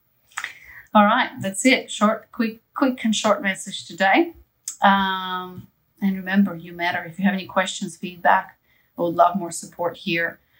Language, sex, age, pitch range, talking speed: English, female, 30-49, 165-195 Hz, 160 wpm